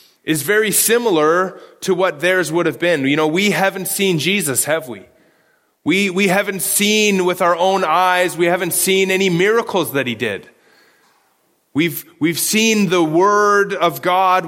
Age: 20-39